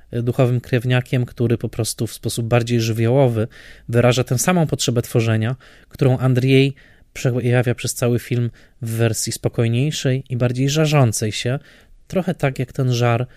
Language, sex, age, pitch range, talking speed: Polish, male, 20-39, 110-130 Hz, 145 wpm